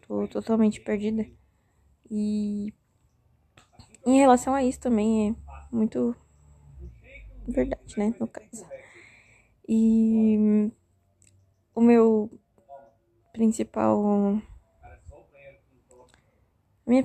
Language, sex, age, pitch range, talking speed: Portuguese, female, 10-29, 140-230 Hz, 65 wpm